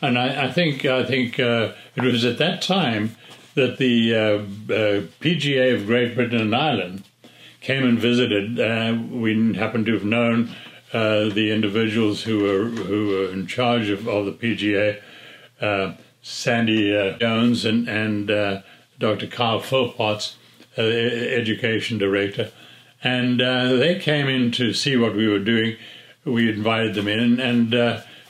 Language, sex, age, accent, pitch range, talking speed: English, male, 60-79, American, 110-125 Hz, 155 wpm